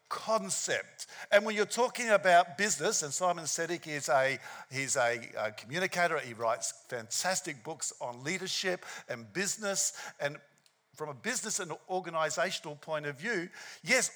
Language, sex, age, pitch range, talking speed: English, male, 50-69, 150-215 Hz, 140 wpm